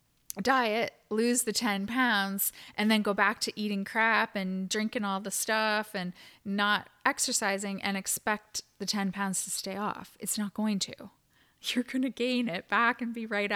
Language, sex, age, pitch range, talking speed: English, female, 20-39, 195-225 Hz, 180 wpm